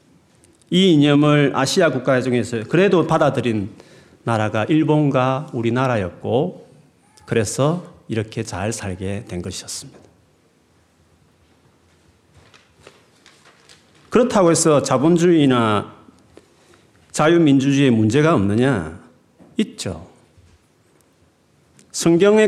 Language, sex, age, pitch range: Korean, male, 40-59, 110-160 Hz